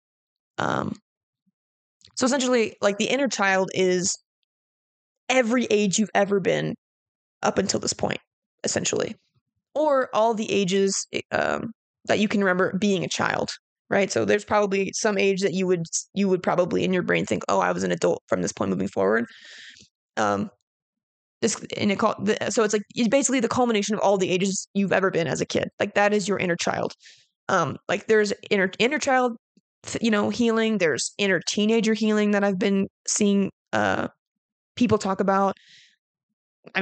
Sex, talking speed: female, 165 wpm